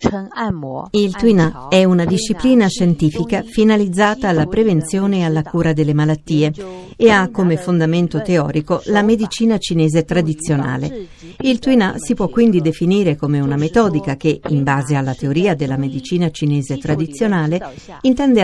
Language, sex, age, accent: Italian, female, 50-69, native